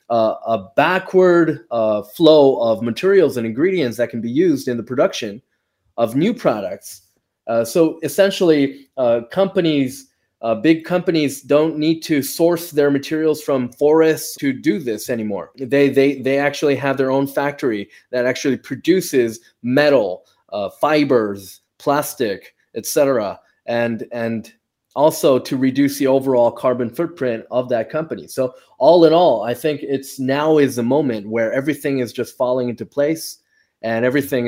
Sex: male